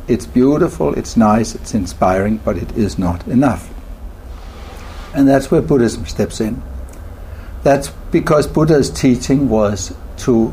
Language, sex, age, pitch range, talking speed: English, male, 60-79, 85-120 Hz, 130 wpm